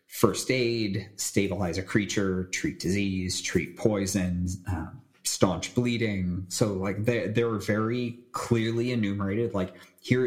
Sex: male